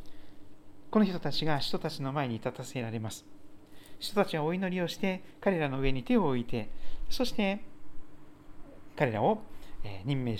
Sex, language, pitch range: male, Japanese, 120-175 Hz